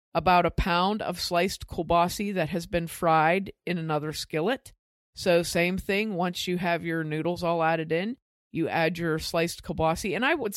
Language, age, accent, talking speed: English, 50-69, American, 180 wpm